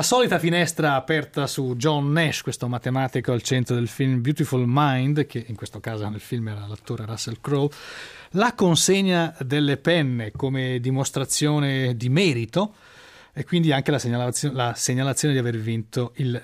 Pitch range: 120-150 Hz